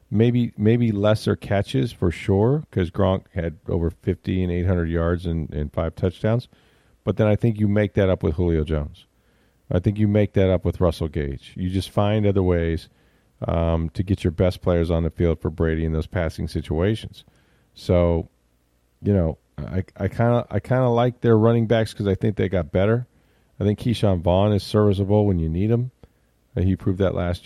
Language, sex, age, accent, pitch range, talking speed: English, male, 40-59, American, 85-110 Hz, 195 wpm